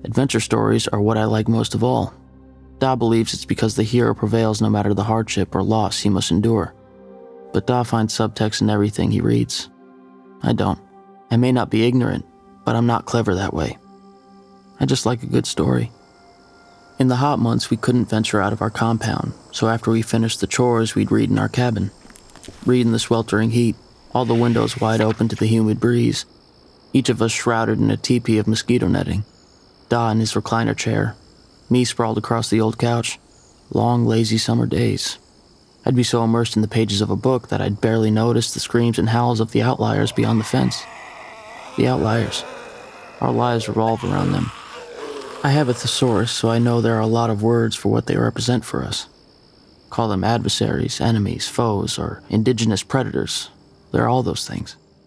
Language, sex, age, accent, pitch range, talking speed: English, male, 30-49, American, 105-120 Hz, 190 wpm